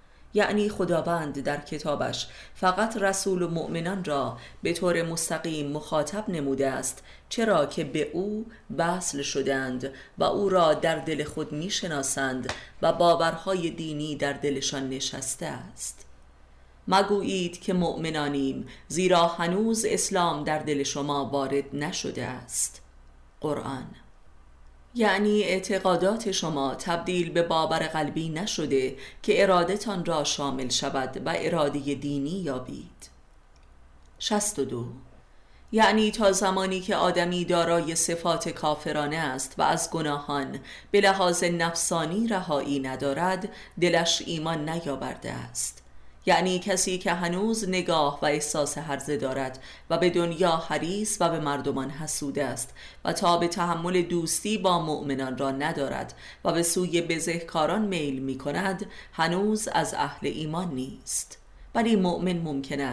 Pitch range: 140-180 Hz